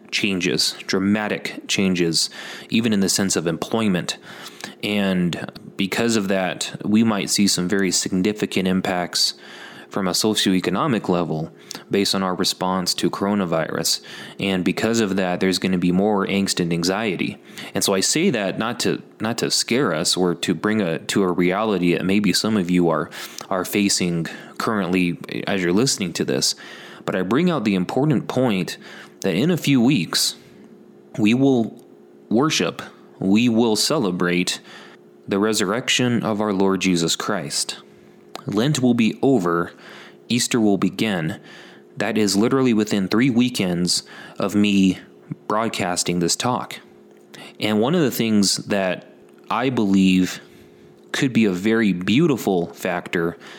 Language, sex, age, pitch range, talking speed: English, male, 20-39, 85-105 Hz, 145 wpm